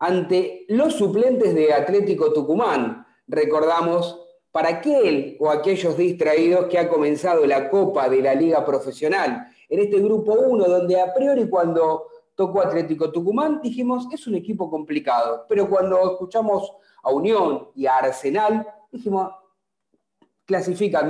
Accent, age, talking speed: Argentinian, 40-59, 135 wpm